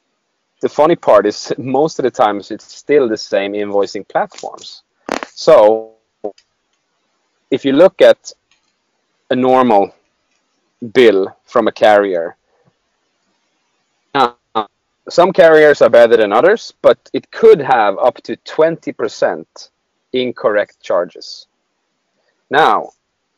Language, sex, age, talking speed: English, male, 30-49, 110 wpm